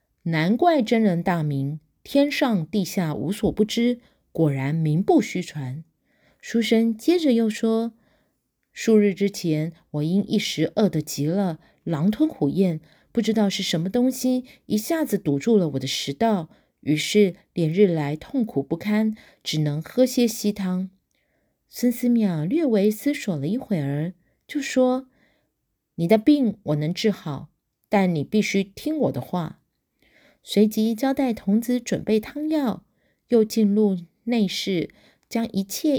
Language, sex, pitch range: Chinese, female, 170-240 Hz